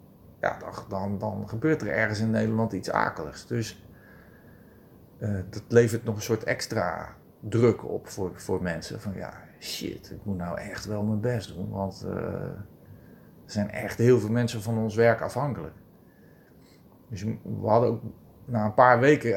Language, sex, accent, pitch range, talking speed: Dutch, male, Dutch, 105-120 Hz, 165 wpm